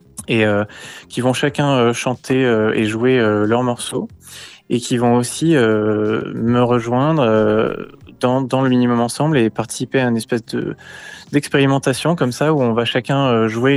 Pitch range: 110-130 Hz